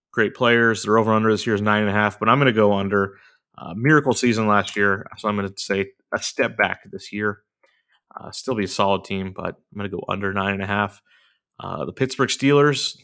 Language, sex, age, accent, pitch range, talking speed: English, male, 30-49, American, 100-125 Hz, 235 wpm